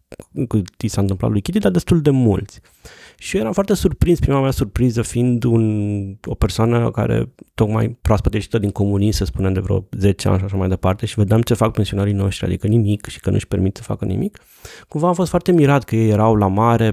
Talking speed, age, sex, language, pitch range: 220 wpm, 30-49, male, Romanian, 100-135 Hz